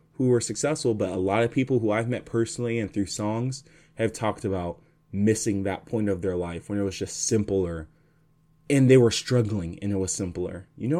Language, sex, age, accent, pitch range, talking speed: English, male, 20-39, American, 100-155 Hz, 215 wpm